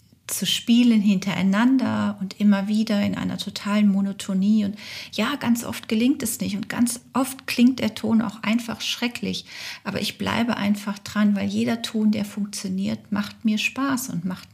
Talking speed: 170 wpm